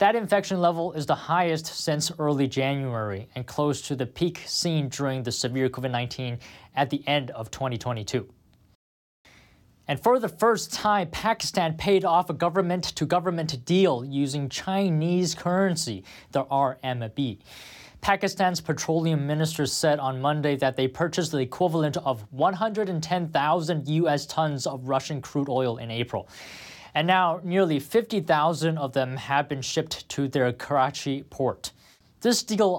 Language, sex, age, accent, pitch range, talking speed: English, male, 20-39, American, 130-170 Hz, 140 wpm